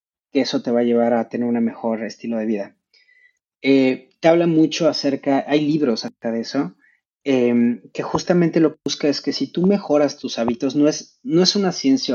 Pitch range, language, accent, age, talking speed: 120-165 Hz, Spanish, Mexican, 30-49, 205 wpm